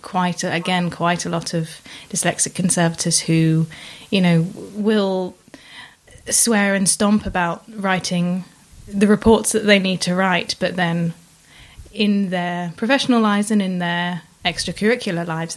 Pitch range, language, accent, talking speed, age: 175-210 Hz, English, British, 135 wpm, 20-39